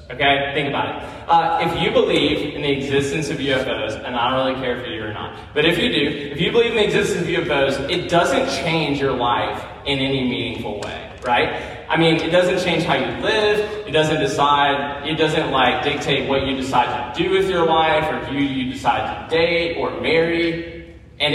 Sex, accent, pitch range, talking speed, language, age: male, American, 110-155 Hz, 215 wpm, English, 20-39